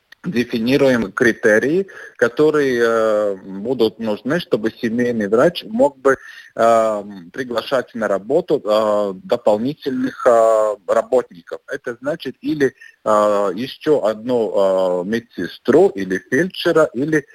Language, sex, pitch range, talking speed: Russian, male, 110-170 Hz, 95 wpm